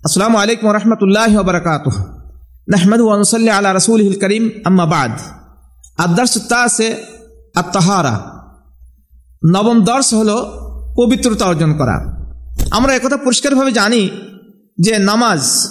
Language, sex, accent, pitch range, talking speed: Bengali, male, native, 195-250 Hz, 80 wpm